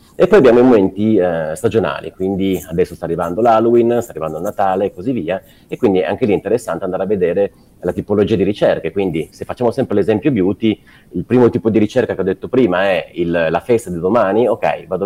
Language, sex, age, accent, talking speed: Italian, male, 30-49, native, 225 wpm